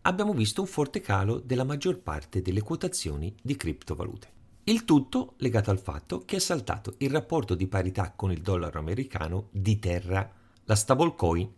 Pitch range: 95-130 Hz